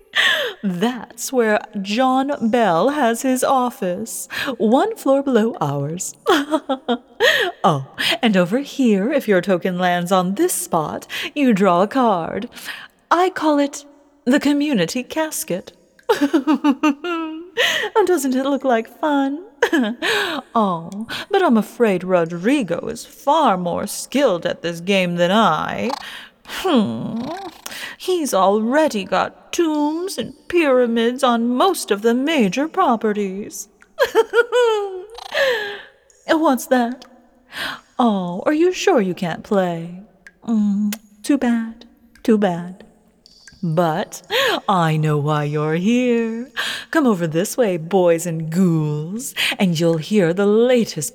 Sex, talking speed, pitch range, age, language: female, 115 wpm, 190-295 Hz, 30-49, English